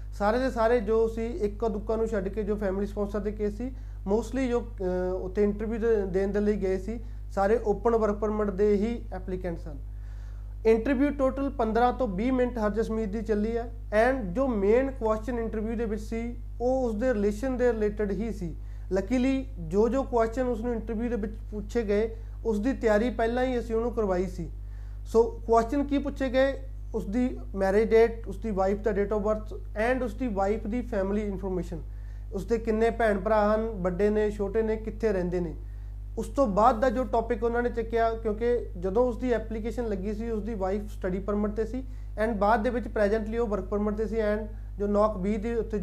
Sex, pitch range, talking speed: male, 195-235 Hz, 205 wpm